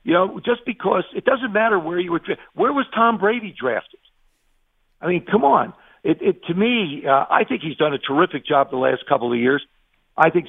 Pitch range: 135-175 Hz